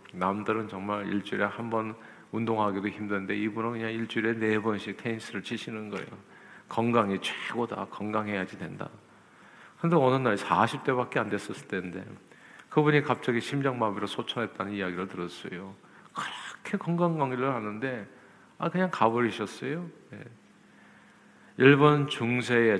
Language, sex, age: Korean, male, 50-69